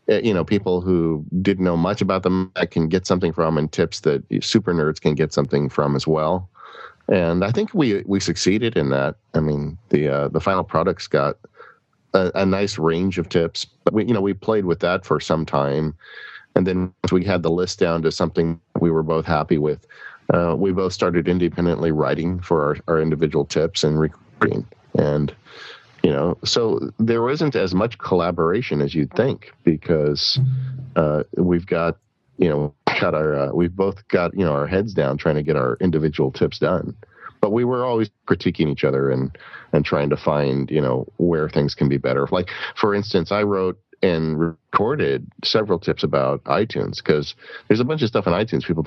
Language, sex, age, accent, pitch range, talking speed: English, male, 40-59, American, 75-95 Hz, 200 wpm